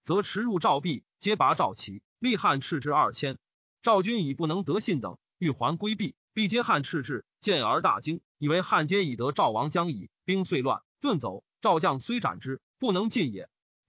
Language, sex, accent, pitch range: Chinese, male, native, 160-220 Hz